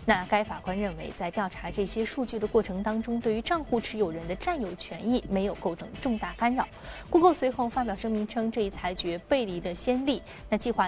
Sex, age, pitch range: female, 20-39, 195-250 Hz